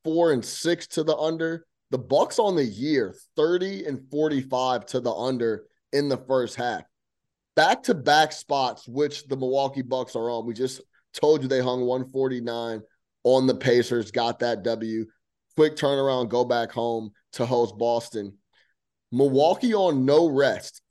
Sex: male